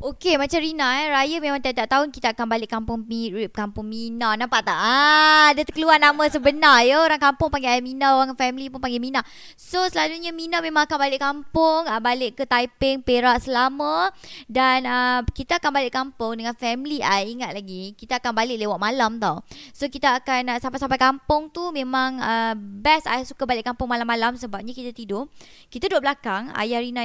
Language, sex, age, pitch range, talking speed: Indonesian, male, 20-39, 240-285 Hz, 190 wpm